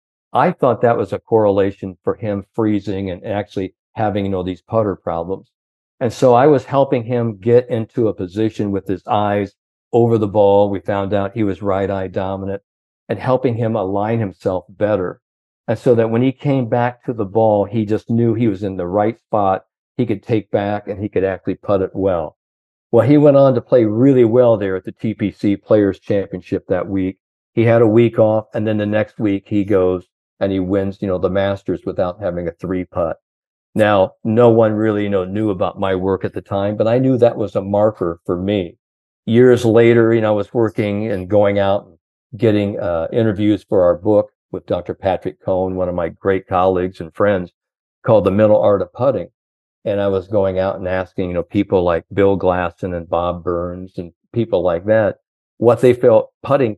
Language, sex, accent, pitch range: English, male, American, 95-115 Hz